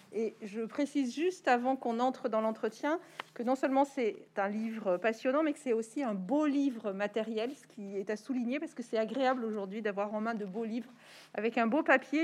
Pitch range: 215-260 Hz